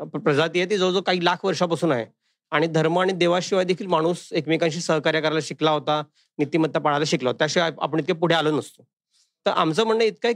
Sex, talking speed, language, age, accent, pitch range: male, 190 wpm, Marathi, 40-59, native, 160-200 Hz